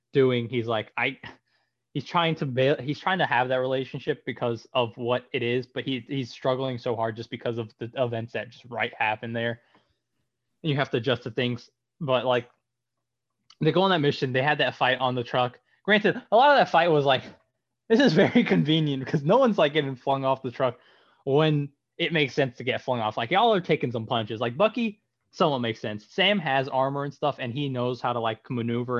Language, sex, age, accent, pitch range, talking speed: English, male, 20-39, American, 120-145 Hz, 225 wpm